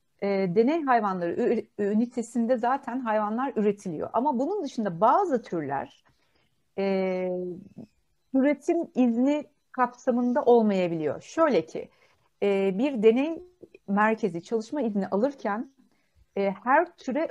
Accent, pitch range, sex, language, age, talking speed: native, 190-245 Hz, female, Turkish, 60-79, 105 wpm